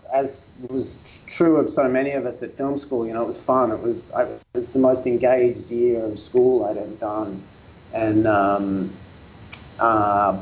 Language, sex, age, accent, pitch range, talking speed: English, male, 30-49, Australian, 110-130 Hz, 185 wpm